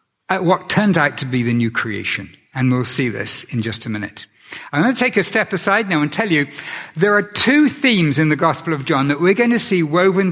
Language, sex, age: English, male, 60-79